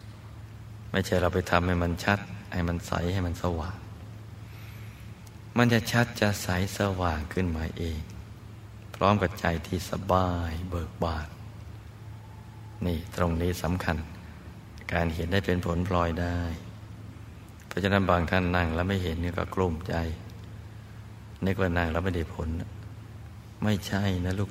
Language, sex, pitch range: Thai, male, 90-105 Hz